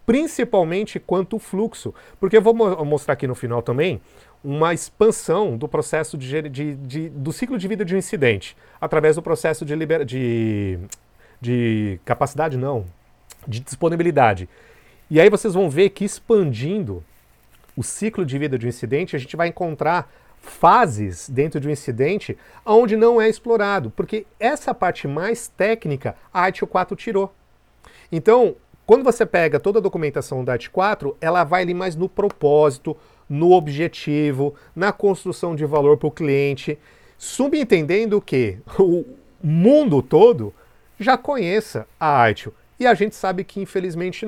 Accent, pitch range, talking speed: Brazilian, 145-205 Hz, 150 wpm